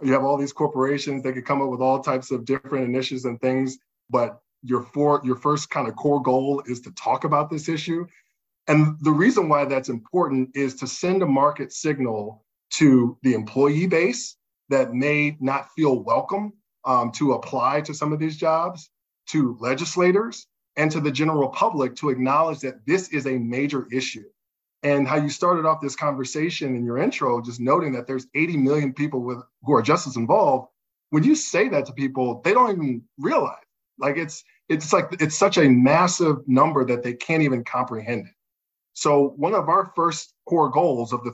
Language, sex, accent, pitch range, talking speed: English, male, American, 125-155 Hz, 185 wpm